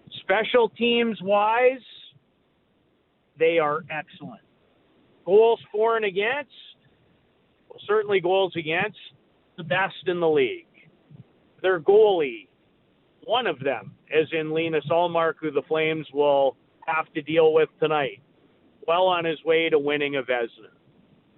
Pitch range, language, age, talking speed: 160-215 Hz, English, 50-69, 125 wpm